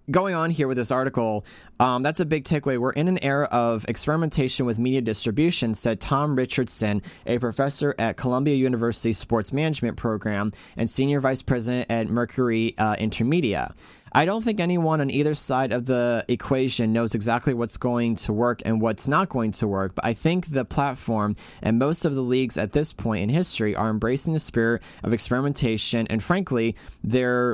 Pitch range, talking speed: 115-145 Hz, 185 wpm